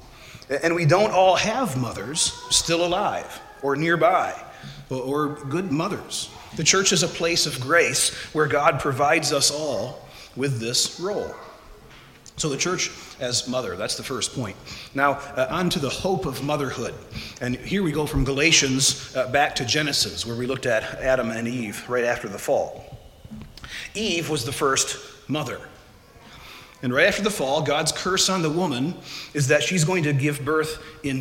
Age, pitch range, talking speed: 30-49, 130-170 Hz, 170 wpm